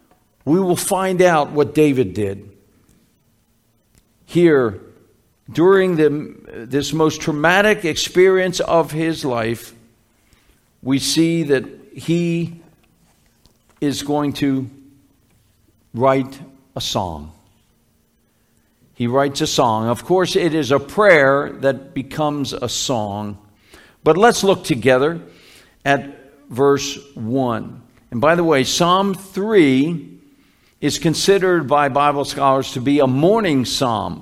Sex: male